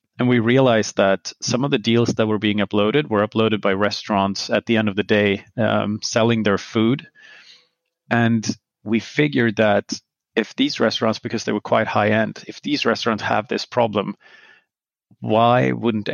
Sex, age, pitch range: male, 30-49, 105-115 Hz